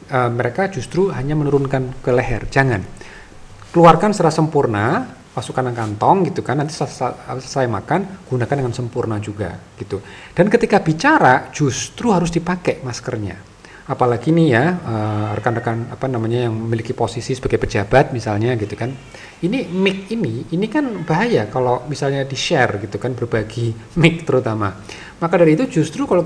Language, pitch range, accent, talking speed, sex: Indonesian, 115-170 Hz, native, 150 wpm, male